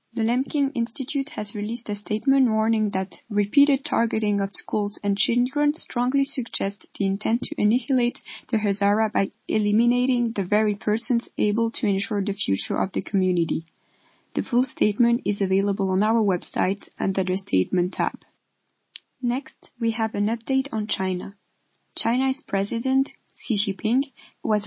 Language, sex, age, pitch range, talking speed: English, female, 20-39, 195-240 Hz, 145 wpm